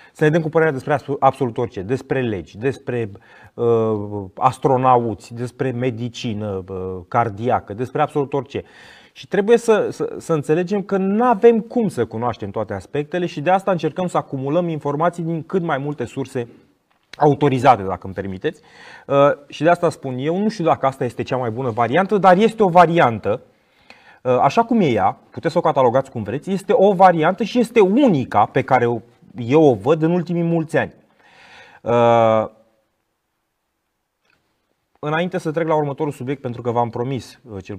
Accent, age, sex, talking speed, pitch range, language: native, 30-49, male, 175 wpm, 105-155 Hz, Romanian